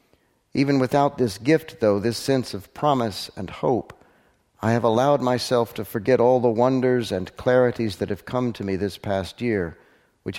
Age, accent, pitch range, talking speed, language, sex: 60-79, American, 95-125 Hz, 180 wpm, English, male